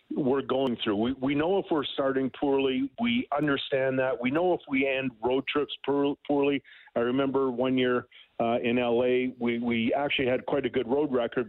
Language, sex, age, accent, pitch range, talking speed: English, male, 50-69, American, 115-135 Hz, 195 wpm